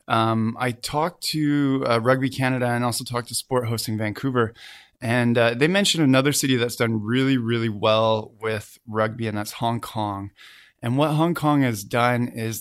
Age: 20-39